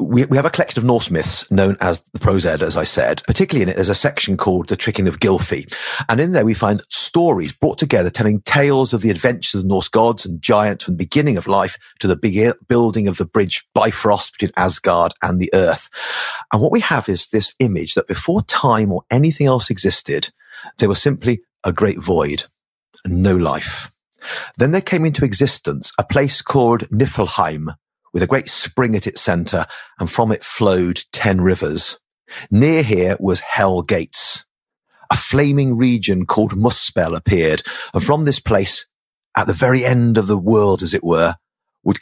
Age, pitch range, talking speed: 40-59, 95-125 Hz, 190 wpm